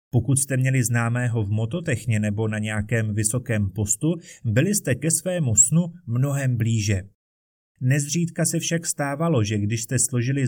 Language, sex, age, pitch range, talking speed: Czech, male, 30-49, 115-155 Hz, 150 wpm